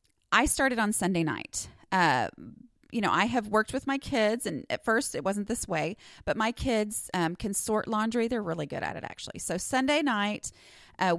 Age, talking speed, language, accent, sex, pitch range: 30-49, 205 wpm, English, American, female, 180-235 Hz